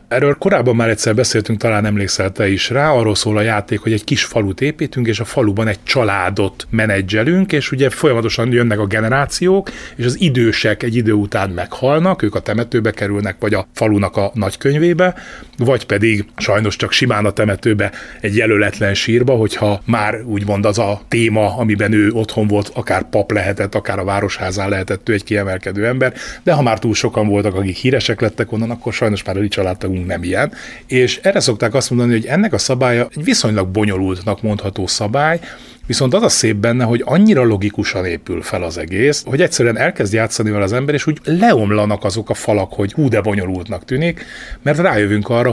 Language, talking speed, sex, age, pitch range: Hungarian, 185 wpm, male, 30-49, 105-130 Hz